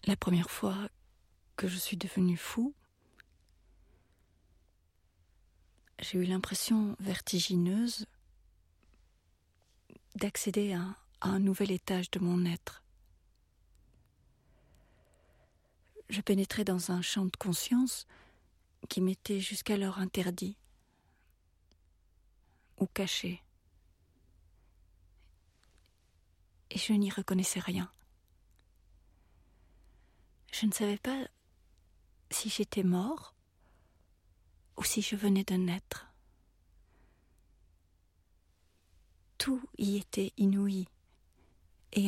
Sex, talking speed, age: female, 80 wpm, 40-59